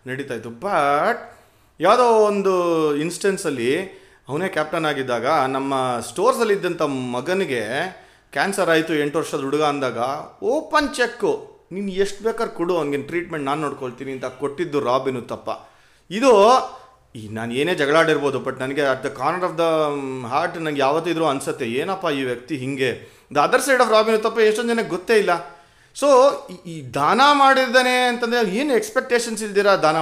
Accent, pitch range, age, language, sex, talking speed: native, 145-225 Hz, 30-49, Kannada, male, 140 wpm